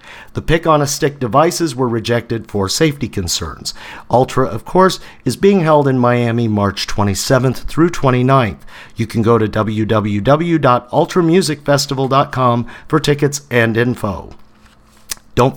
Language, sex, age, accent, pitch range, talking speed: English, male, 50-69, American, 115-150 Hz, 115 wpm